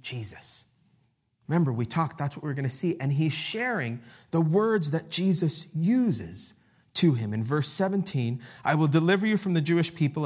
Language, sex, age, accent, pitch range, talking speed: English, male, 30-49, American, 125-170 Hz, 180 wpm